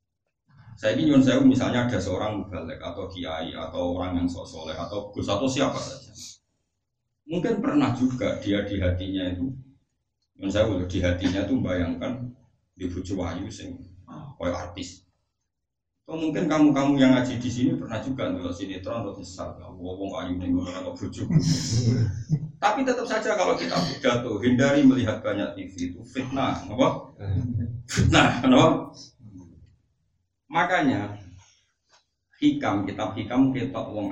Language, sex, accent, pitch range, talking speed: Indonesian, male, native, 90-130 Hz, 130 wpm